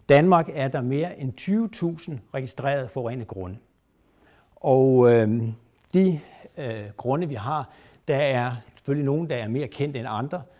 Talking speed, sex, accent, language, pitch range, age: 135 wpm, male, native, Danish, 115-145 Hz, 60-79